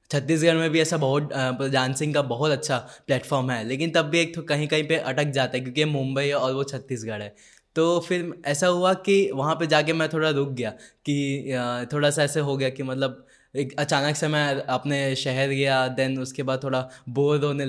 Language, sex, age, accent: English, male, 10-29, Indian